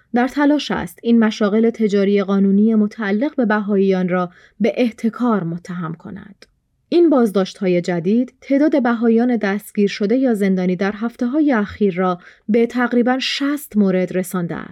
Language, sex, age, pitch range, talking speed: Persian, female, 30-49, 195-250 Hz, 140 wpm